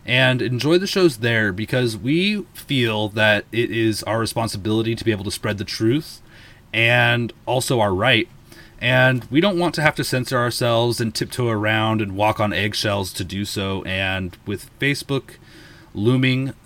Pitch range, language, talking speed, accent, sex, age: 100-120 Hz, English, 170 wpm, American, male, 30-49